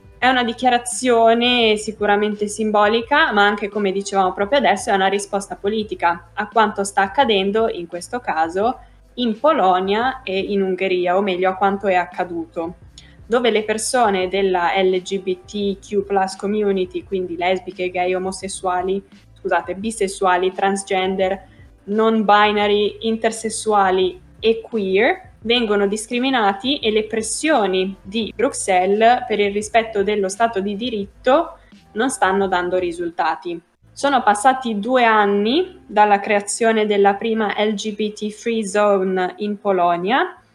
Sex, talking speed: female, 120 wpm